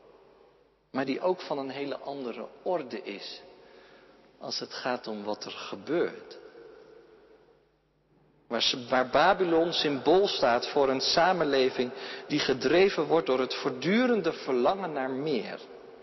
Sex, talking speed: male, 120 wpm